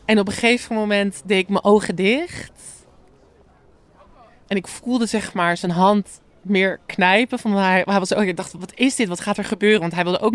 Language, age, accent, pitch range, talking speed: Dutch, 20-39, Dutch, 175-220 Hz, 215 wpm